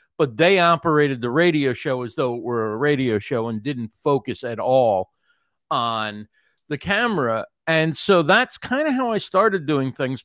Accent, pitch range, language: American, 135-185 Hz, English